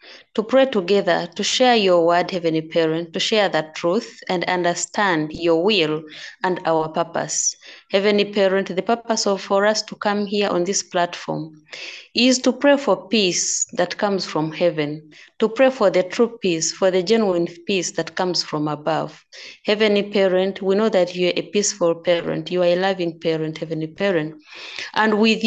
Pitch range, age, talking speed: 170-210 Hz, 30-49, 175 wpm